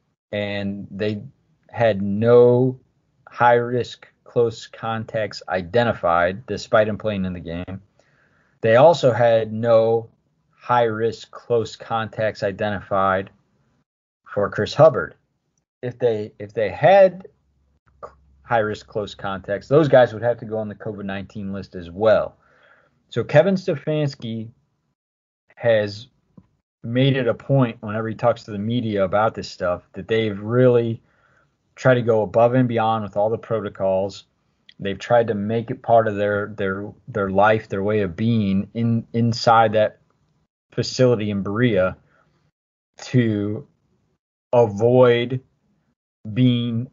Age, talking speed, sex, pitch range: 30-49, 125 wpm, male, 100-120 Hz